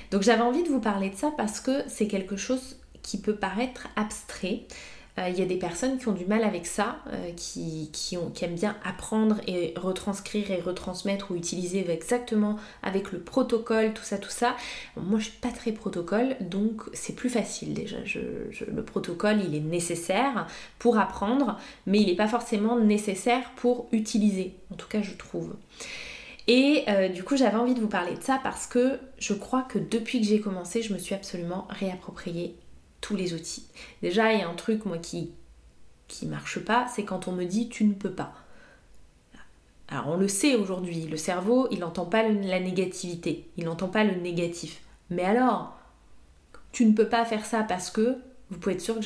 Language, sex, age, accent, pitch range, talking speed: English, female, 20-39, French, 185-230 Hz, 200 wpm